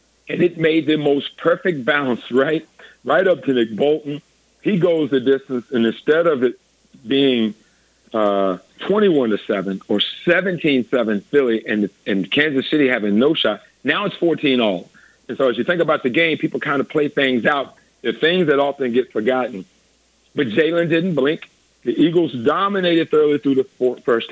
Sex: male